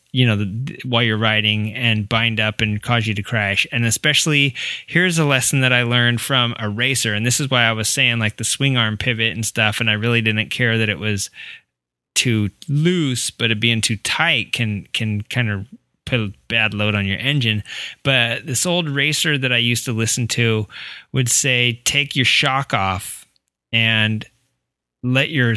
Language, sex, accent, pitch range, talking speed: English, male, American, 110-130 Hz, 195 wpm